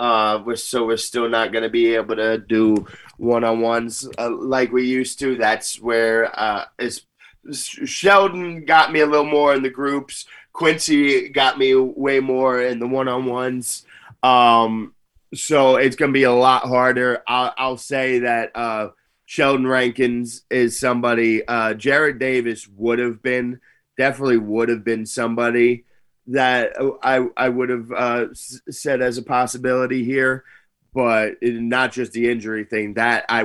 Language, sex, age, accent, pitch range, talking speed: English, male, 20-39, American, 110-130 Hz, 150 wpm